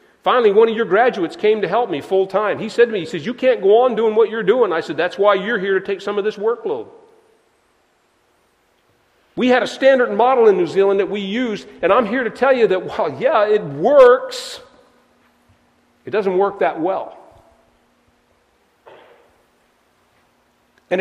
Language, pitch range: English, 195-320 Hz